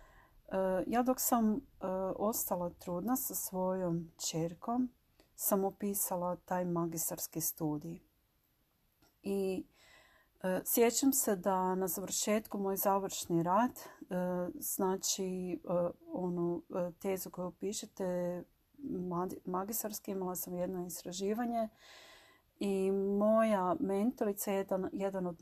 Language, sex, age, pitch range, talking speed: Croatian, female, 40-59, 180-210 Hz, 90 wpm